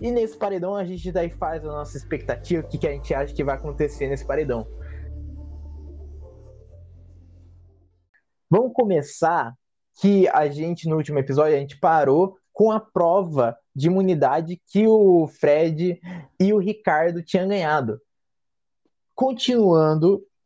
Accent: Brazilian